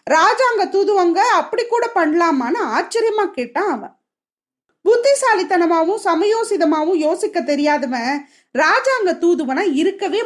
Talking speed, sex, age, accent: 90 wpm, female, 30-49, native